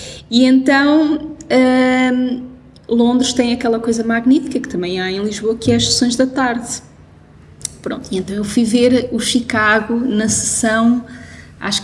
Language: Portuguese